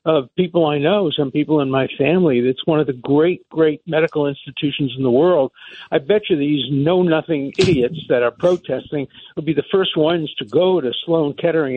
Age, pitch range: 60-79, 145-190 Hz